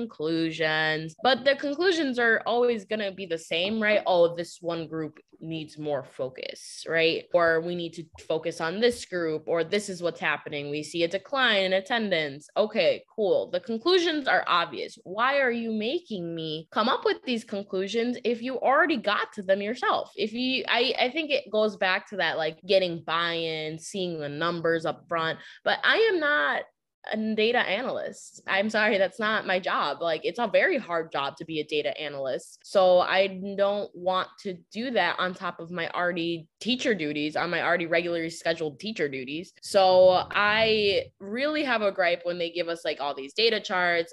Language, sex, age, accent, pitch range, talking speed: English, female, 20-39, American, 160-220 Hz, 190 wpm